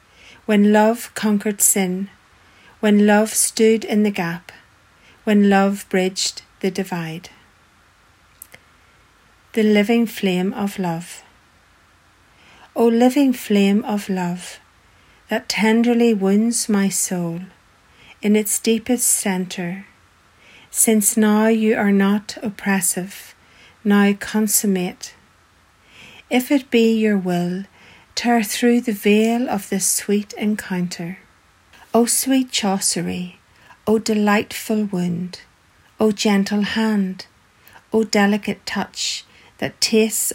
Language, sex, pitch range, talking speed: English, female, 185-220 Hz, 105 wpm